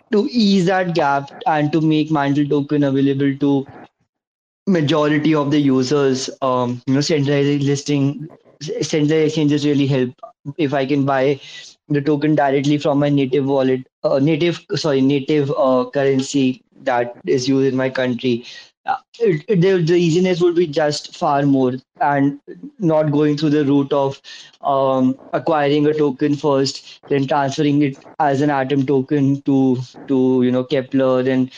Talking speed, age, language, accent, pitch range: 160 wpm, 20-39, English, Indian, 135-150 Hz